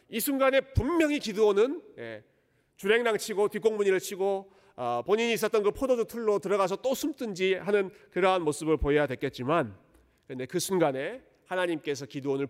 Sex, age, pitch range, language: male, 40-59, 150-235 Hz, Korean